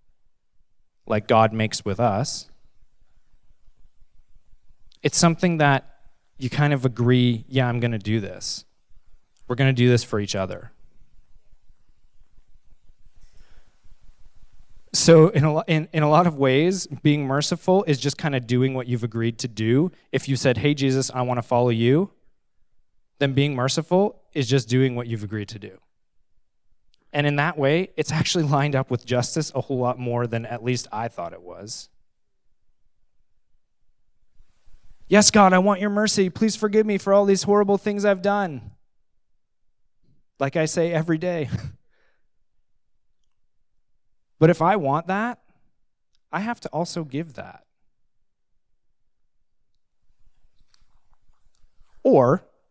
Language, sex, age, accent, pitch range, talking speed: English, male, 20-39, American, 100-155 Hz, 135 wpm